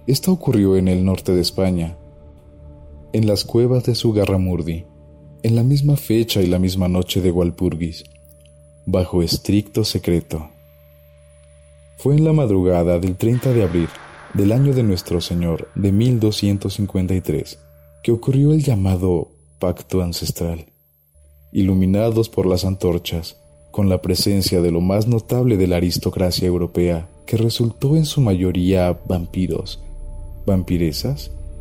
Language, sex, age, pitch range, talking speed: Spanish, male, 30-49, 85-105 Hz, 130 wpm